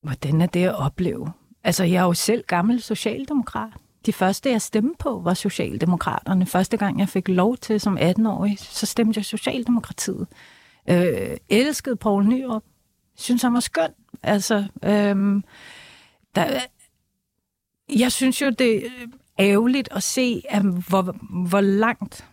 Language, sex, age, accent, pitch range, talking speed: Danish, female, 40-59, native, 185-235 Hz, 130 wpm